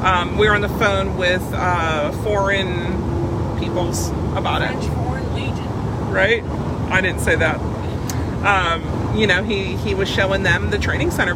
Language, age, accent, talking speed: English, 40-59, American, 150 wpm